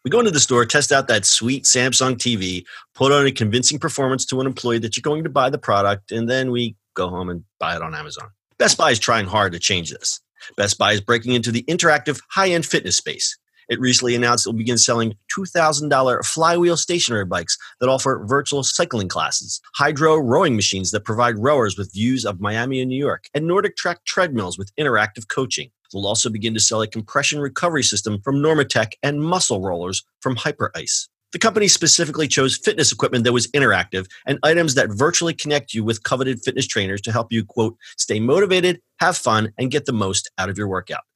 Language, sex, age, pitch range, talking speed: English, male, 40-59, 110-150 Hz, 205 wpm